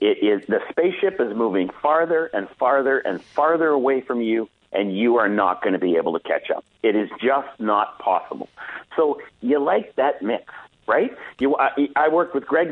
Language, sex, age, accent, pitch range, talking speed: English, male, 50-69, American, 135-200 Hz, 200 wpm